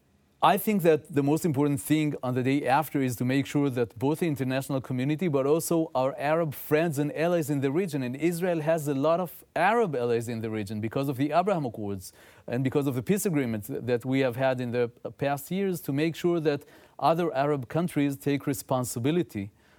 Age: 30-49